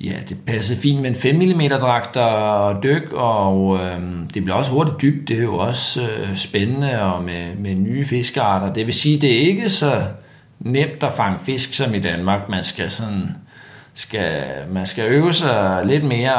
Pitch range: 100-135 Hz